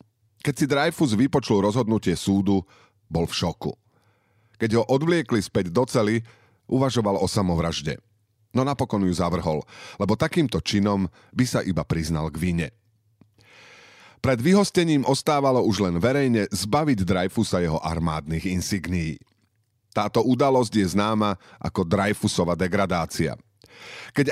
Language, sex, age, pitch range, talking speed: Slovak, male, 40-59, 95-125 Hz, 120 wpm